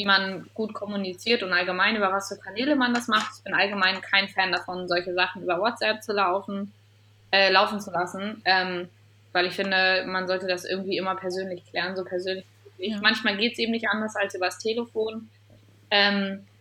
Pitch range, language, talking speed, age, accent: 180-200 Hz, German, 190 wpm, 20-39, German